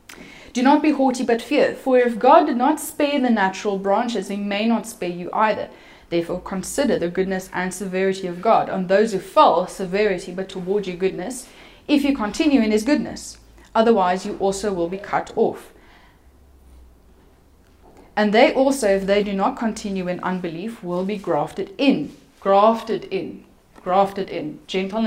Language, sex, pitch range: English, female, 185-245 Hz